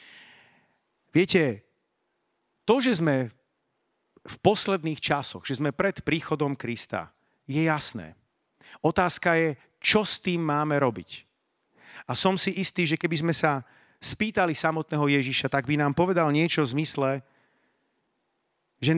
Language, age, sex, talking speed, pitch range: Slovak, 40-59, male, 125 wpm, 135-170 Hz